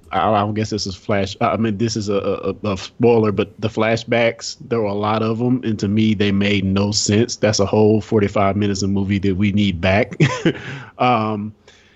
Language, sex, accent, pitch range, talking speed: English, male, American, 100-120 Hz, 210 wpm